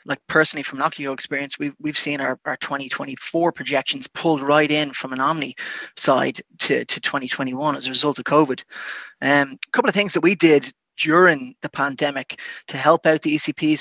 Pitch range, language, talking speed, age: 145-165 Hz, English, 185 wpm, 20-39